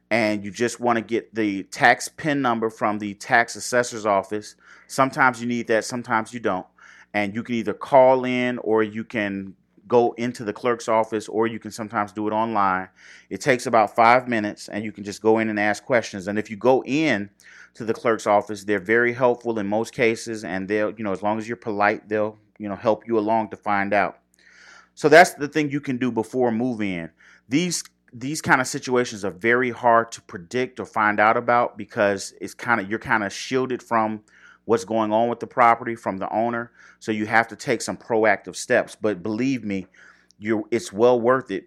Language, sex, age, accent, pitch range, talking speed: English, male, 30-49, American, 105-120 Hz, 215 wpm